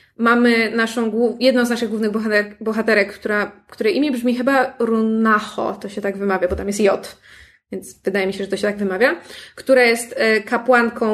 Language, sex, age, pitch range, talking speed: Polish, female, 20-39, 210-250 Hz, 185 wpm